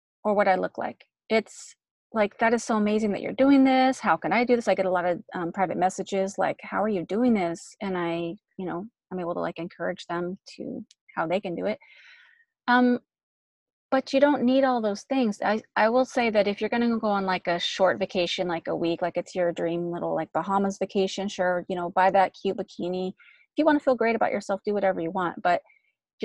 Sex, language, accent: female, English, American